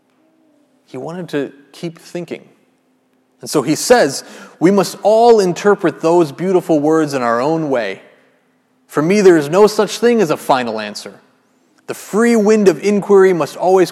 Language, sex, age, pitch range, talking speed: English, male, 30-49, 135-195 Hz, 165 wpm